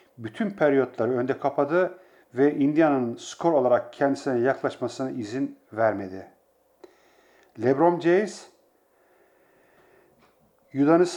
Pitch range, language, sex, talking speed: 125-165 Hz, English, male, 80 wpm